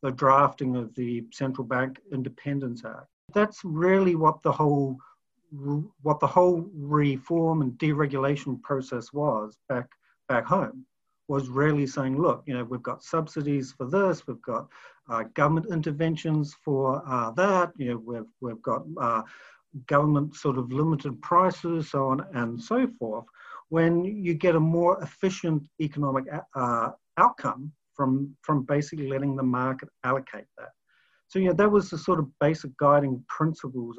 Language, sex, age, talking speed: English, male, 50-69, 155 wpm